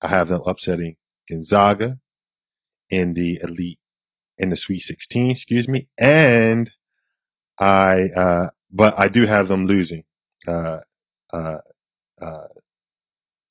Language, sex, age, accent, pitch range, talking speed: English, male, 20-39, American, 90-105 Hz, 110 wpm